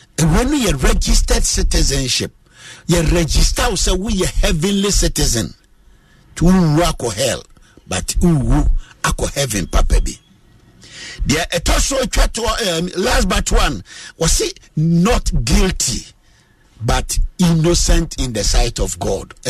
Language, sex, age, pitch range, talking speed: English, male, 50-69, 130-200 Hz, 125 wpm